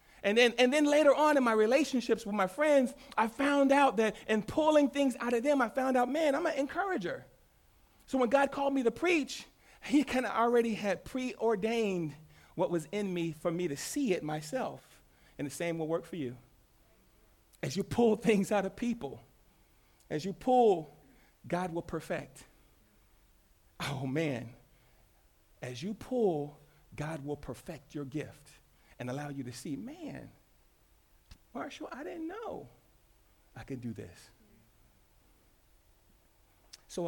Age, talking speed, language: 40-59, 155 wpm, English